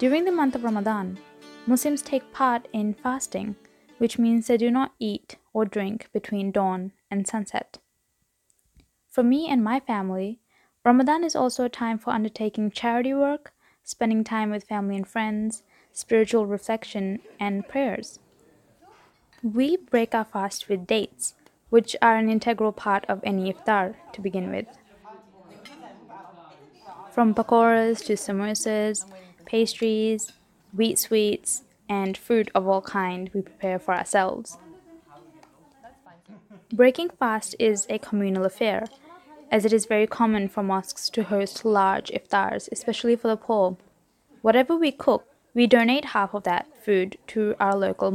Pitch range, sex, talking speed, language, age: 200-235 Hz, female, 140 wpm, English, 20-39